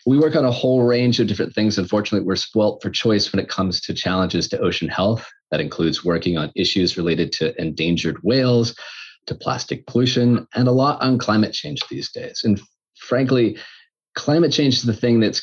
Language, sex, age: English, male, 30-49